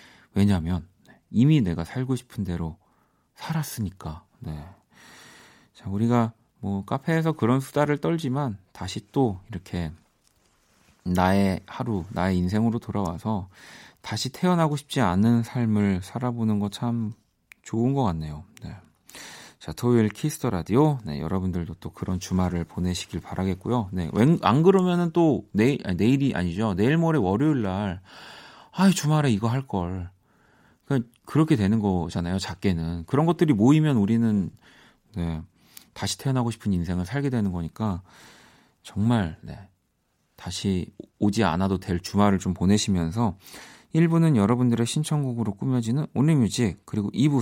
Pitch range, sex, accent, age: 95-125 Hz, male, native, 40-59